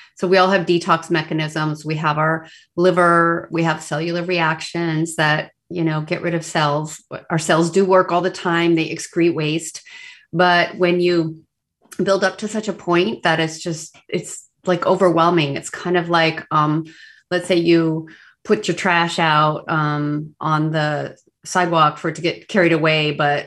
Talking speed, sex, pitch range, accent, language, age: 175 wpm, female, 155-175 Hz, American, English, 30-49